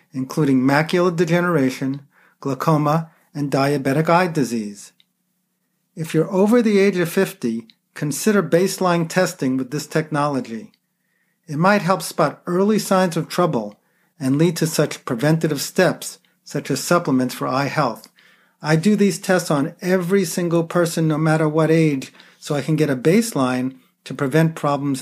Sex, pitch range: male, 135-185 Hz